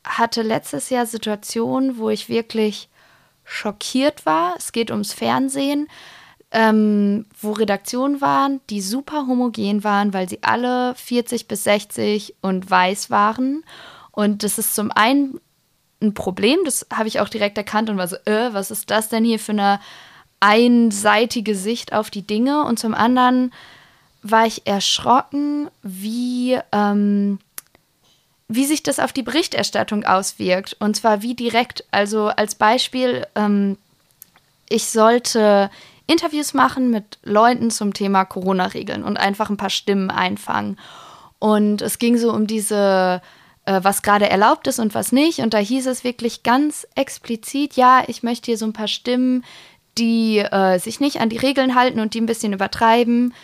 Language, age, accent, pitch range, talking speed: German, 20-39, German, 205-245 Hz, 155 wpm